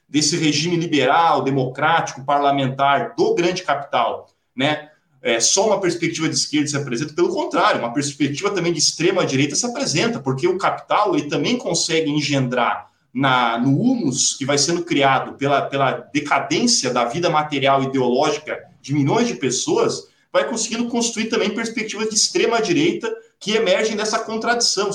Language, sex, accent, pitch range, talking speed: Portuguese, male, Brazilian, 135-195 Hz, 150 wpm